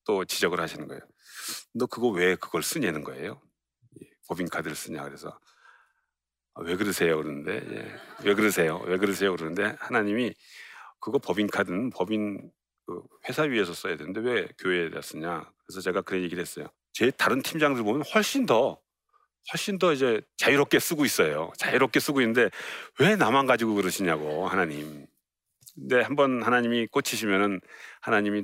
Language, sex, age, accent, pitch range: Korean, male, 40-59, native, 85-120 Hz